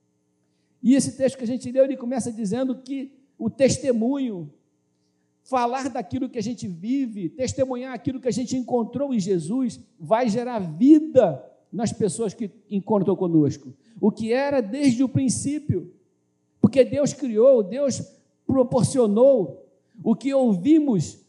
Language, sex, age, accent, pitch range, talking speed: Portuguese, male, 50-69, Brazilian, 220-265 Hz, 140 wpm